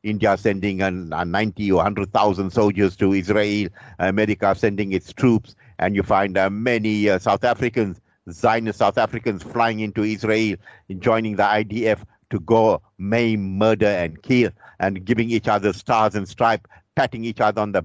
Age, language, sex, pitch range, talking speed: 50-69, English, male, 100-125 Hz, 160 wpm